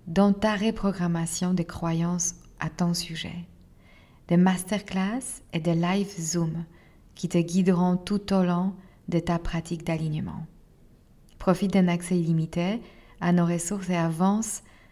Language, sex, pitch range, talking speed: French, female, 165-190 Hz, 135 wpm